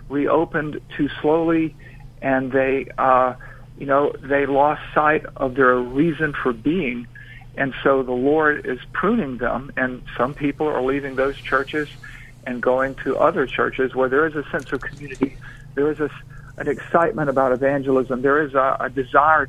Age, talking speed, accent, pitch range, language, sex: 50-69, 165 wpm, American, 130-145 Hz, English, male